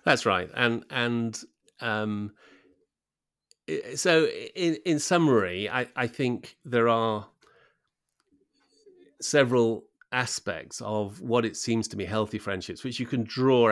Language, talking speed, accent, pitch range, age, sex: English, 125 wpm, British, 95-120 Hz, 30-49, male